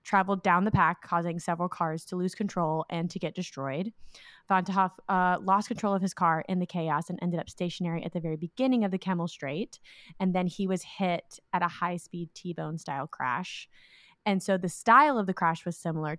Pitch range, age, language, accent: 160-195 Hz, 20-39, English, American